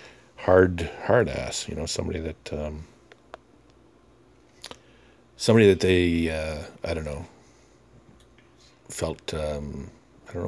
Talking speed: 115 wpm